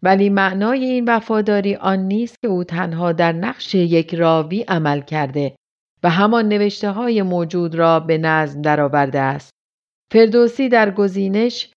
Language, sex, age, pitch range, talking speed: Persian, female, 40-59, 165-205 Hz, 145 wpm